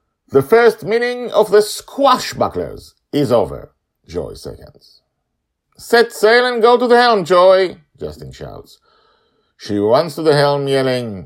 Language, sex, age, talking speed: English, male, 50-69, 145 wpm